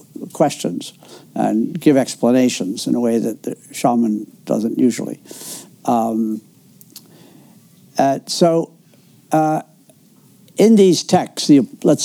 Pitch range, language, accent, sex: 135-195 Hz, English, American, male